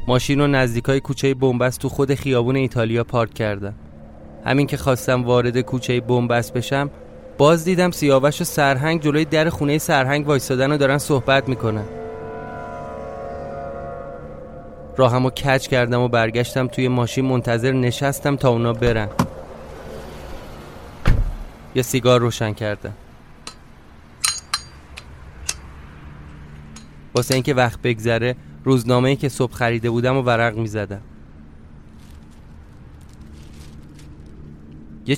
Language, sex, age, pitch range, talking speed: Persian, male, 20-39, 80-135 Hz, 105 wpm